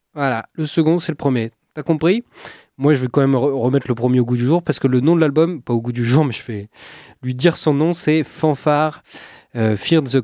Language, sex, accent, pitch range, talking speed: French, male, French, 115-145 Hz, 260 wpm